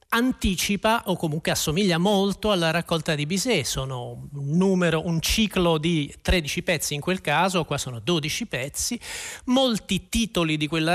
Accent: native